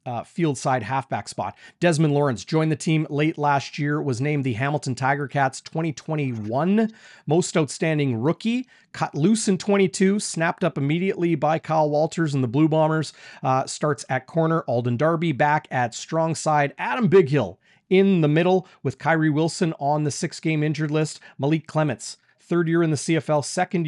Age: 30-49